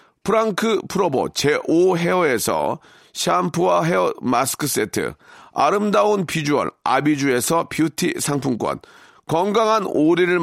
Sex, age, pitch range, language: male, 40-59, 145-205 Hz, Korean